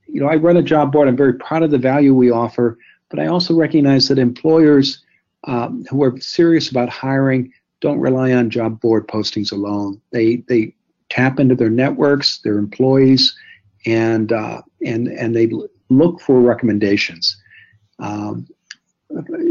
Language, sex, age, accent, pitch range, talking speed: English, male, 60-79, American, 115-150 Hz, 155 wpm